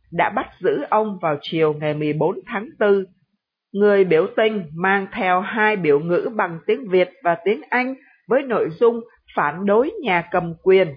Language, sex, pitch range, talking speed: Vietnamese, female, 175-225 Hz, 175 wpm